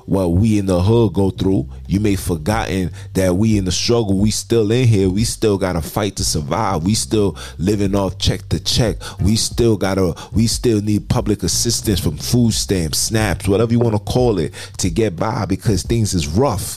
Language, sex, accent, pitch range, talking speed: English, male, American, 90-115 Hz, 210 wpm